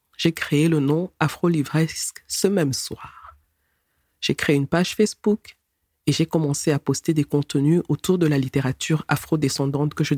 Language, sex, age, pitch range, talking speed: French, female, 40-59, 140-175 Hz, 160 wpm